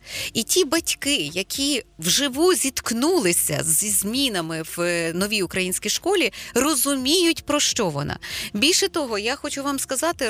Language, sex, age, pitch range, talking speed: Ukrainian, female, 30-49, 205-295 Hz, 130 wpm